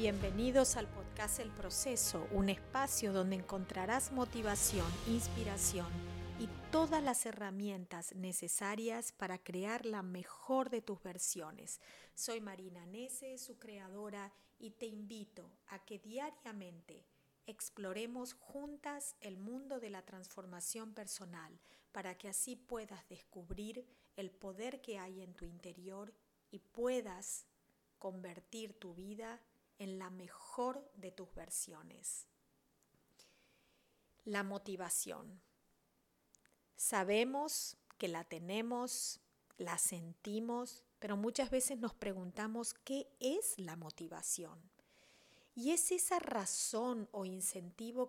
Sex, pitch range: female, 185-235 Hz